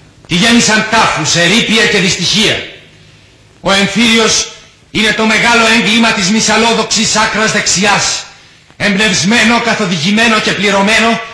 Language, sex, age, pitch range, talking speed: Greek, male, 40-59, 170-225 Hz, 105 wpm